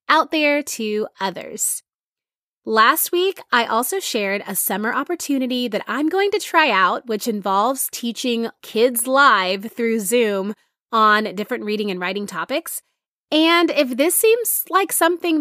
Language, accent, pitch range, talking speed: English, American, 205-290 Hz, 145 wpm